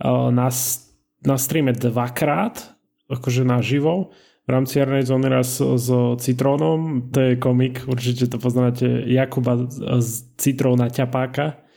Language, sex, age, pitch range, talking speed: Slovak, male, 20-39, 125-150 Hz, 130 wpm